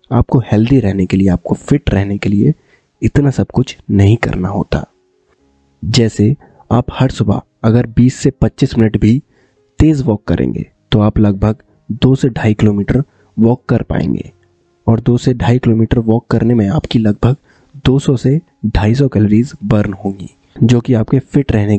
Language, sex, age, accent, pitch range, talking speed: Hindi, male, 20-39, native, 105-130 Hz, 165 wpm